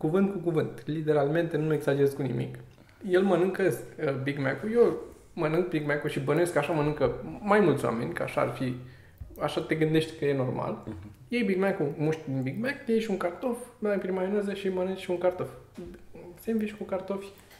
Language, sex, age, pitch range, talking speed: Romanian, male, 20-39, 125-185 Hz, 180 wpm